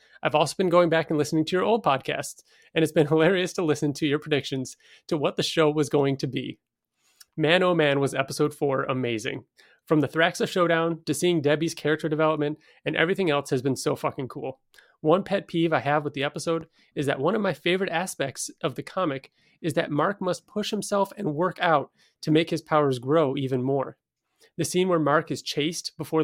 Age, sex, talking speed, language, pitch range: 30-49, male, 215 wpm, English, 145-170 Hz